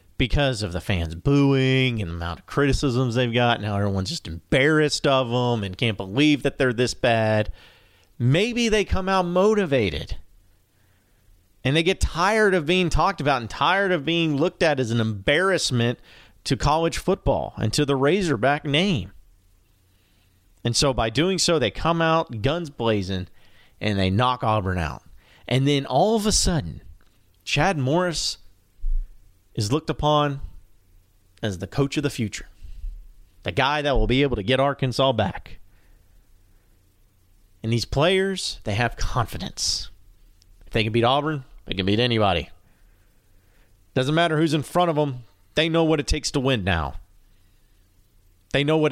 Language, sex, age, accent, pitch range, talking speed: English, male, 30-49, American, 95-140 Hz, 160 wpm